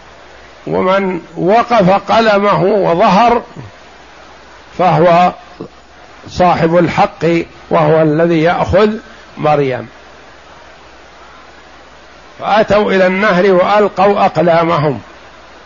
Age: 50-69